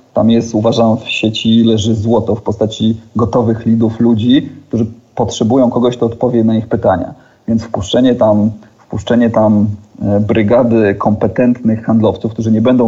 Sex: male